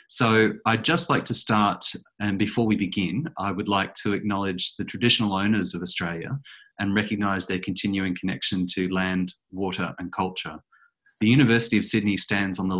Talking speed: 175 wpm